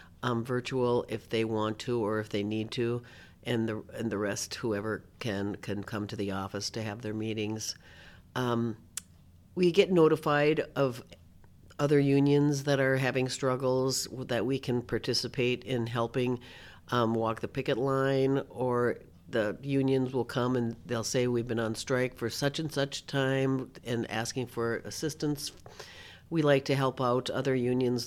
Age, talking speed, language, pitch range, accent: 60-79, 165 wpm, English, 110-130 Hz, American